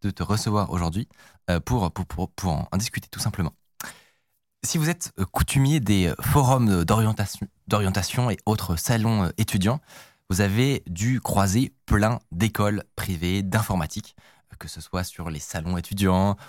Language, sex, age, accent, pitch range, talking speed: French, male, 20-39, French, 95-125 Hz, 140 wpm